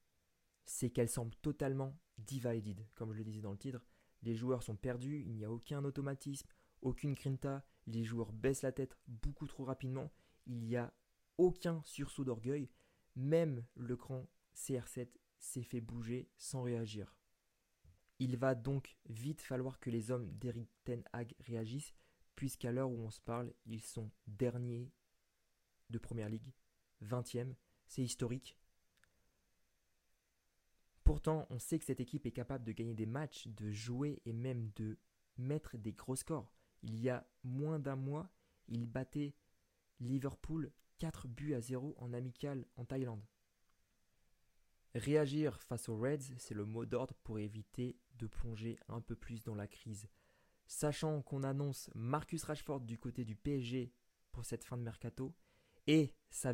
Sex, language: male, French